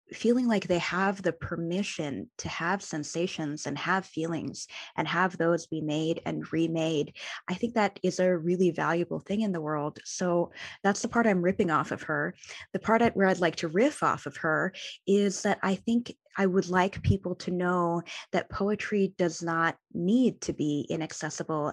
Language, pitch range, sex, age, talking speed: English, 165-195 Hz, female, 20-39, 185 wpm